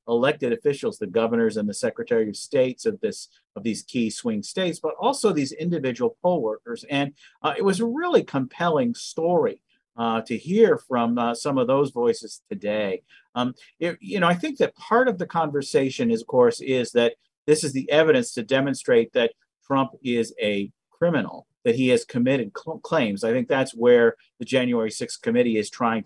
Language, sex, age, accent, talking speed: English, male, 50-69, American, 190 wpm